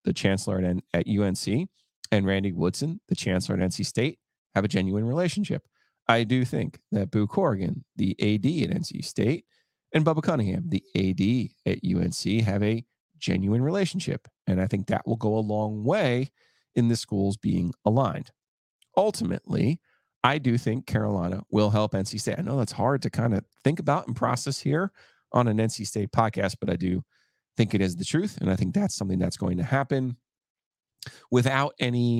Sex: male